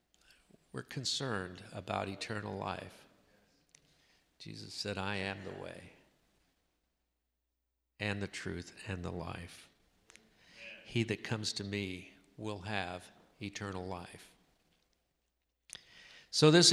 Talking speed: 95 wpm